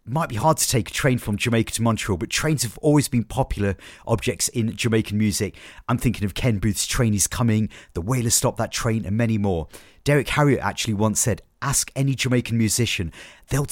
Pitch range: 100-125 Hz